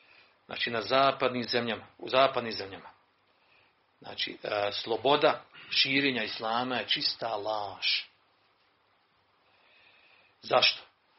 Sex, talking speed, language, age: male, 80 wpm, Croatian, 40-59